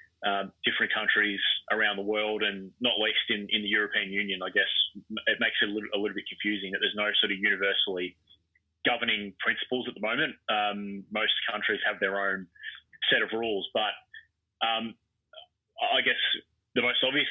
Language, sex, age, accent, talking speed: English, male, 20-39, Australian, 180 wpm